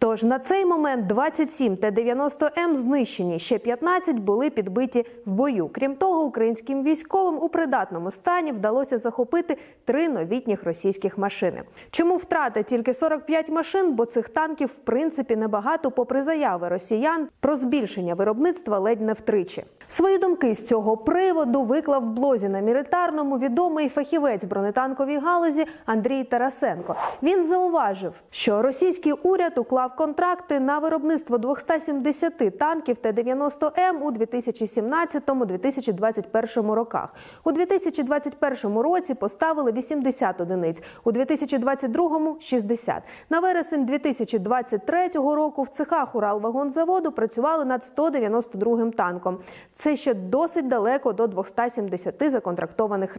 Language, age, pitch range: Ukrainian, 30-49, 230-315 Hz